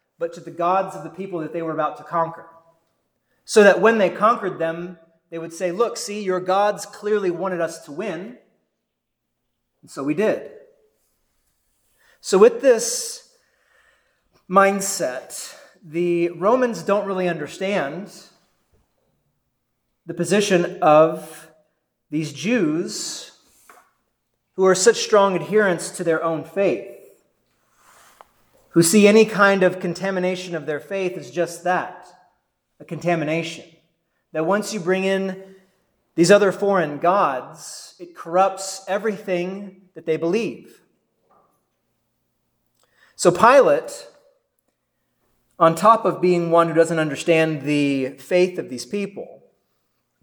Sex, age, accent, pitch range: male, 30-49, American, 165-195 Hz